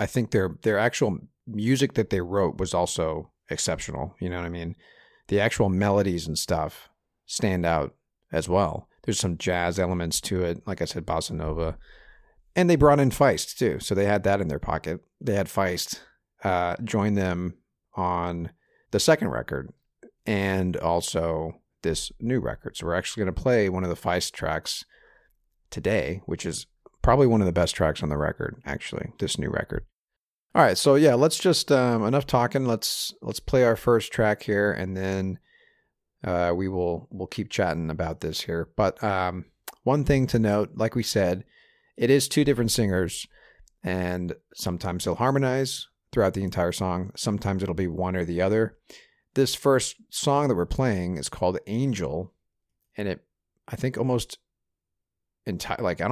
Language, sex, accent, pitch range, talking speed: English, male, American, 90-120 Hz, 175 wpm